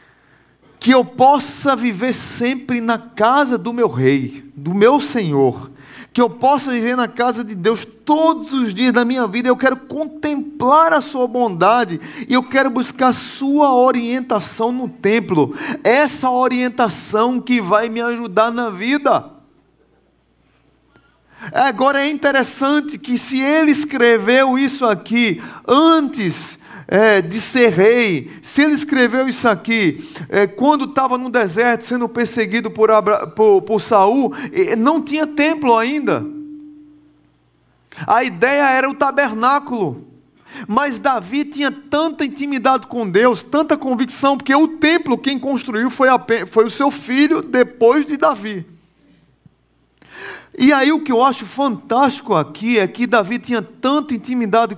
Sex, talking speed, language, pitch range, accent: male, 135 wpm, Portuguese, 225-275 Hz, Brazilian